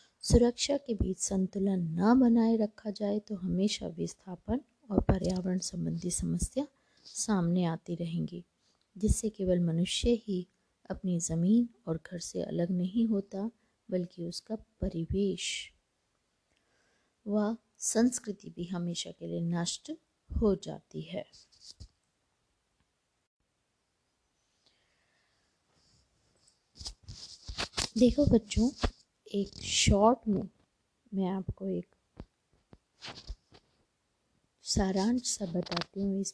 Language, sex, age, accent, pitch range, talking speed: Hindi, female, 20-39, native, 180-220 Hz, 95 wpm